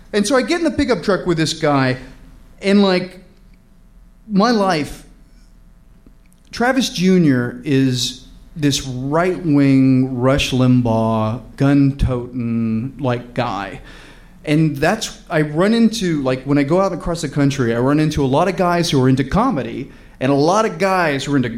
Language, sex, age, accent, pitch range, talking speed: English, male, 30-49, American, 135-190 Hz, 155 wpm